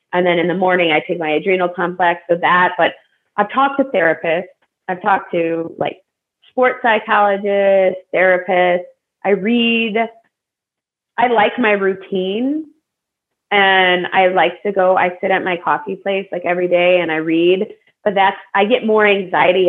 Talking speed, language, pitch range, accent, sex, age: 160 wpm, English, 170-215 Hz, American, female, 20-39